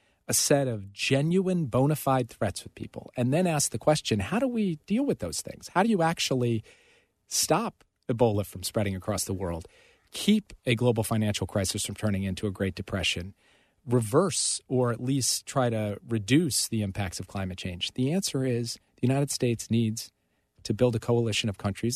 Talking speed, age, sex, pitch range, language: 185 wpm, 40-59, male, 105-130 Hz, English